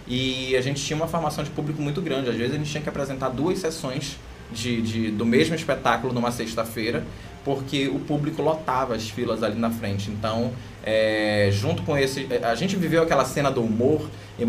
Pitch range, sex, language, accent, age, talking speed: 115-150 Hz, male, Portuguese, Brazilian, 20-39, 200 wpm